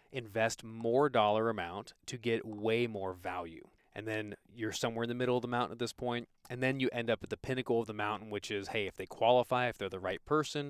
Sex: male